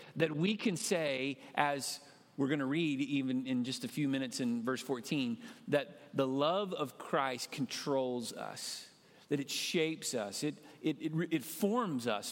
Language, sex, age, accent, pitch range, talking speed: English, male, 40-59, American, 140-205 Hz, 165 wpm